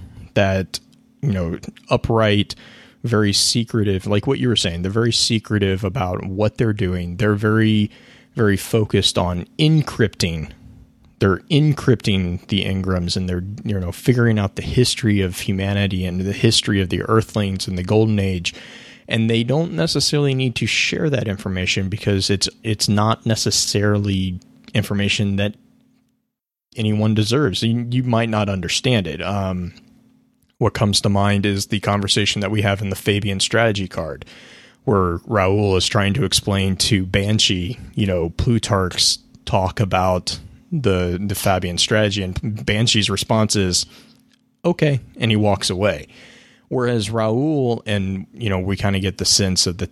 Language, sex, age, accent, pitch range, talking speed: English, male, 30-49, American, 95-115 Hz, 155 wpm